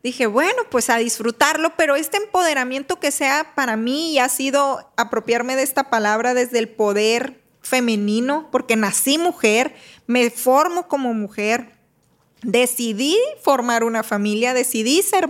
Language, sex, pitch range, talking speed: Spanish, female, 235-280 Hz, 140 wpm